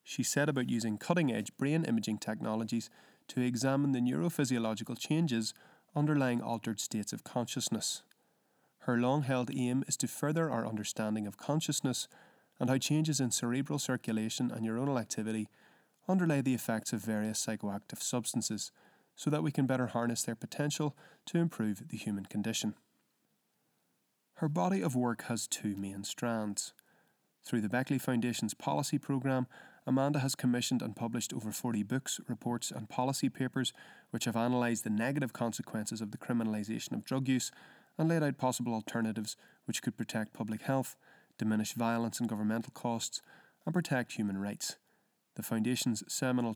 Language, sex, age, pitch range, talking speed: English, male, 30-49, 110-130 Hz, 150 wpm